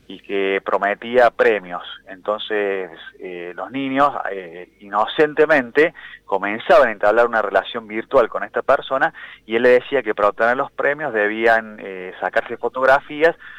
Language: Spanish